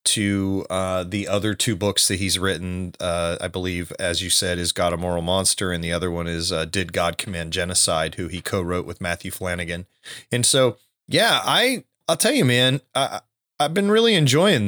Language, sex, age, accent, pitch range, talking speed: English, male, 30-49, American, 95-120 Hz, 205 wpm